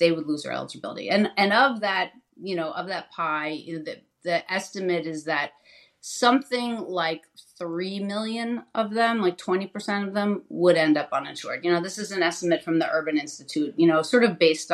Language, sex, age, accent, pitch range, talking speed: English, female, 30-49, American, 160-205 Hz, 195 wpm